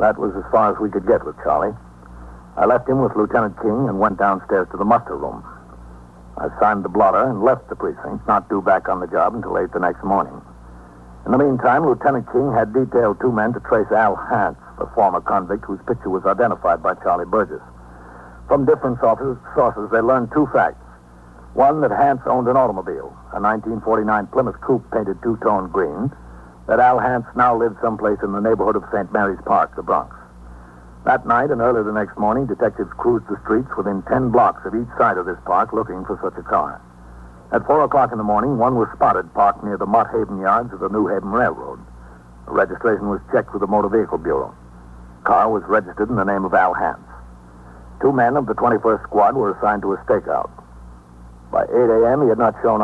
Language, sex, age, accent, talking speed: English, male, 60-79, American, 210 wpm